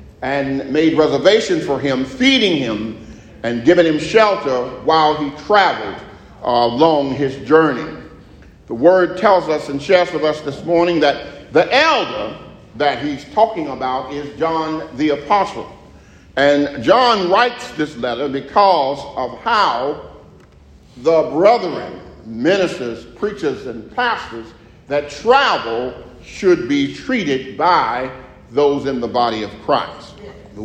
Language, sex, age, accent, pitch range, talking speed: English, male, 50-69, American, 130-180 Hz, 125 wpm